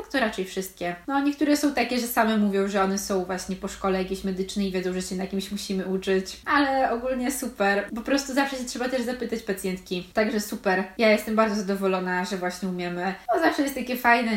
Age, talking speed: 20-39, 215 wpm